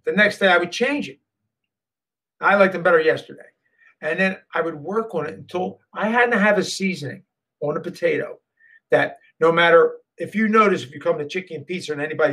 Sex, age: male, 50-69